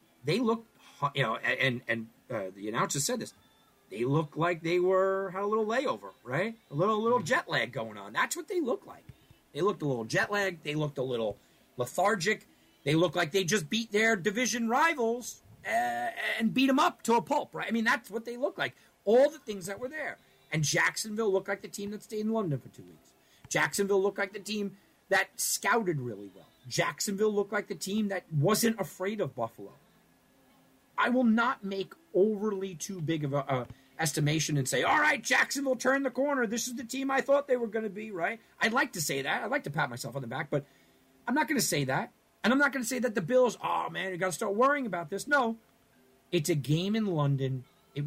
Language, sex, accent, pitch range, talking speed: English, male, American, 145-225 Hz, 225 wpm